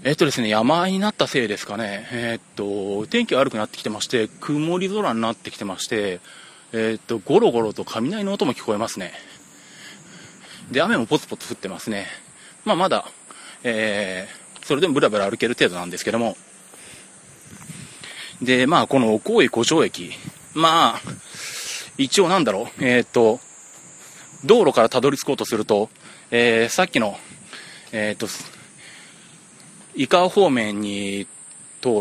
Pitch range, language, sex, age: 110-160 Hz, Japanese, male, 30-49